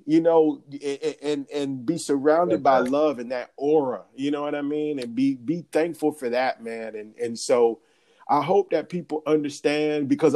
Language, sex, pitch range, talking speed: English, male, 120-150 Hz, 185 wpm